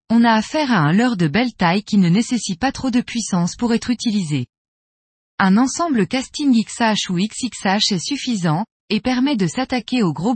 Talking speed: 190 wpm